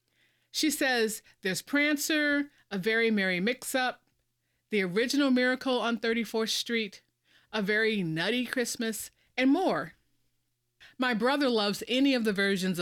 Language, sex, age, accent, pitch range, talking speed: English, female, 40-59, American, 180-250 Hz, 125 wpm